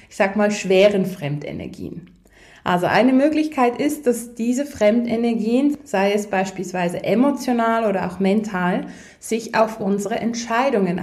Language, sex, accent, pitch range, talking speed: German, female, German, 205-245 Hz, 125 wpm